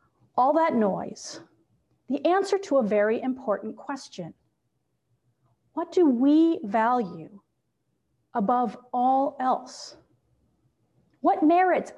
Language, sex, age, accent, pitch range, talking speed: English, female, 40-59, American, 210-285 Hz, 95 wpm